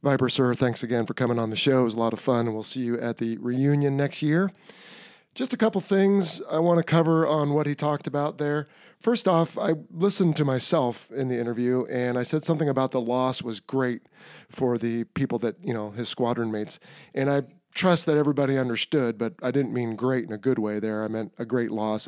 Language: English